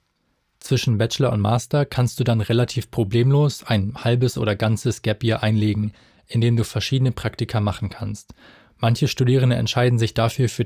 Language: German